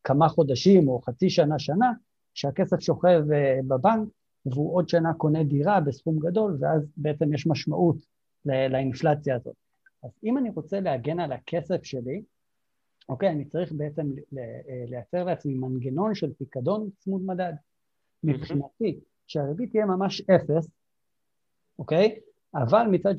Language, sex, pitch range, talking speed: Hebrew, male, 135-170 Hz, 130 wpm